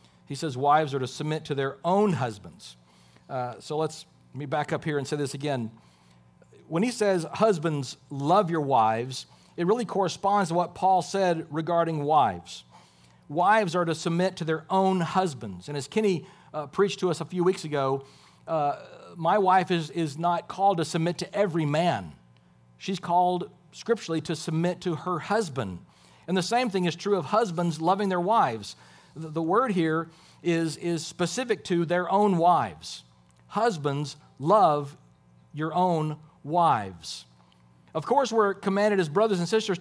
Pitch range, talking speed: 145-190 Hz, 170 wpm